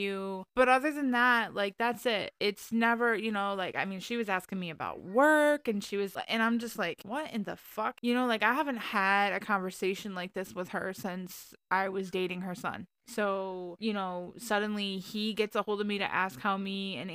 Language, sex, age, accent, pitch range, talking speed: English, female, 20-39, American, 185-215 Hz, 225 wpm